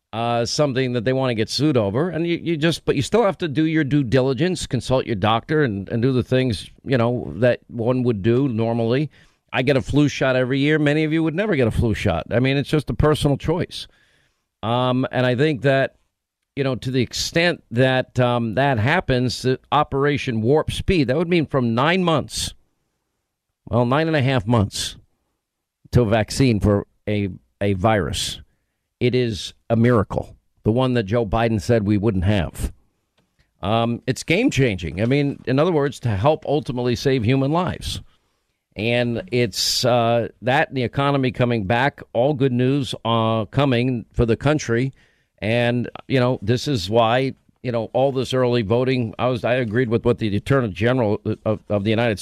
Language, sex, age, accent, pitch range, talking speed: English, male, 50-69, American, 115-135 Hz, 190 wpm